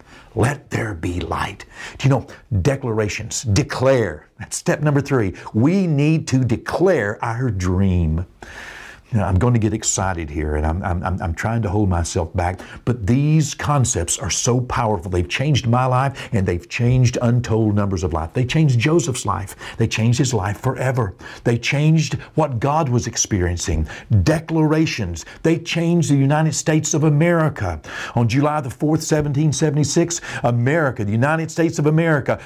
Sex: male